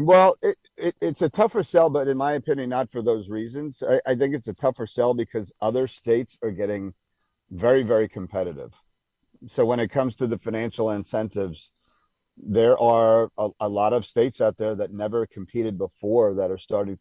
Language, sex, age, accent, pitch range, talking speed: English, male, 40-59, American, 105-120 Hz, 190 wpm